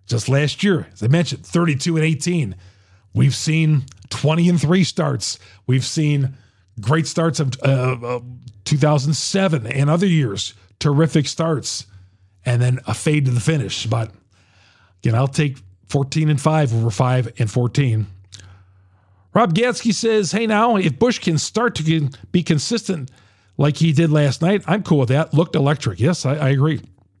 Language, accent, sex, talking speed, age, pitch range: English, American, male, 160 wpm, 40-59, 110-155 Hz